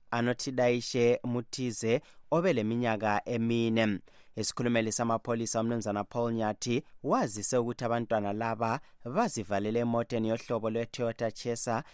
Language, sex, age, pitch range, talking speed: English, male, 30-49, 105-120 Hz, 110 wpm